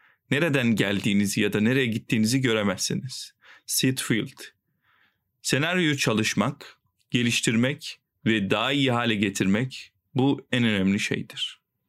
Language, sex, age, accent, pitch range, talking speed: Turkish, male, 40-59, native, 110-135 Hz, 100 wpm